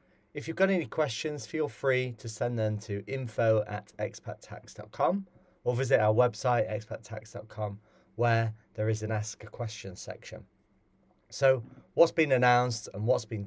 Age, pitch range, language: 30-49, 110-130 Hz, English